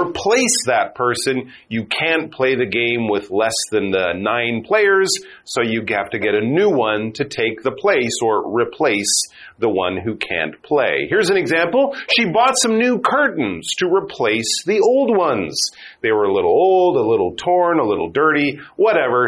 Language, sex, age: Chinese, male, 40-59